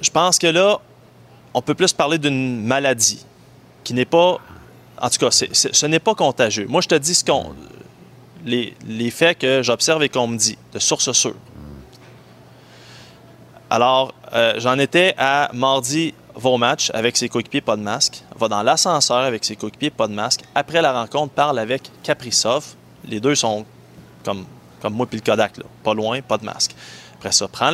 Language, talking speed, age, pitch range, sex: French, 190 wpm, 30-49, 105-145 Hz, male